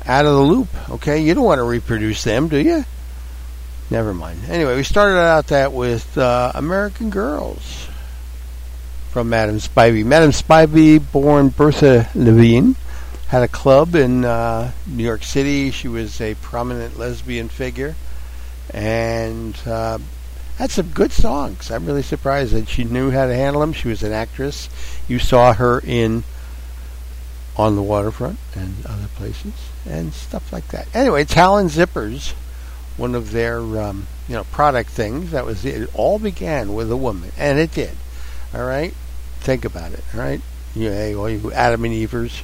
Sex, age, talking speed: male, 60-79, 165 wpm